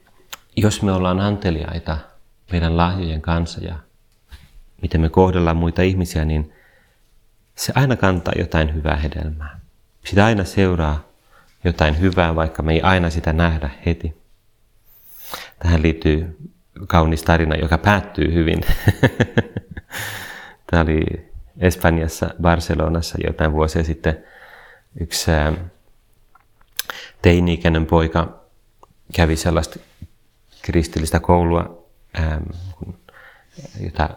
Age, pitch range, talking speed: 30-49, 80-95 Hz, 95 wpm